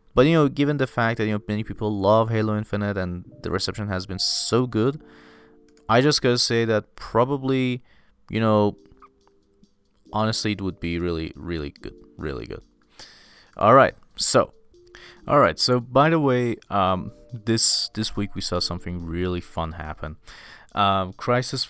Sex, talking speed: male, 165 wpm